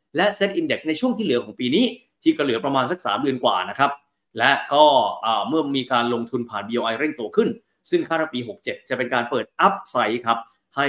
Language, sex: Thai, male